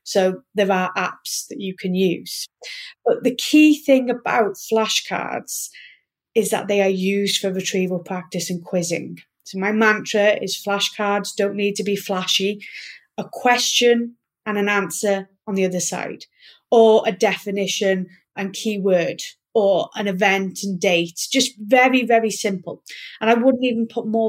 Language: English